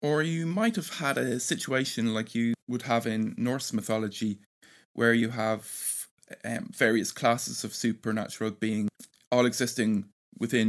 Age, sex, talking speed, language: 20-39, male, 145 wpm, English